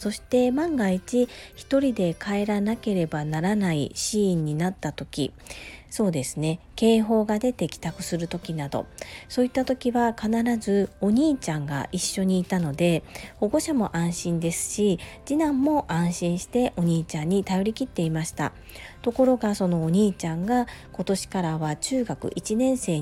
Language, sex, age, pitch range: Japanese, female, 40-59, 165-230 Hz